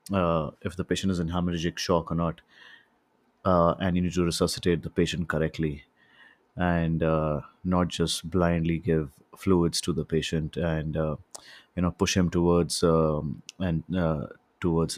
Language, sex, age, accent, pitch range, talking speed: English, male, 30-49, Indian, 80-95 Hz, 160 wpm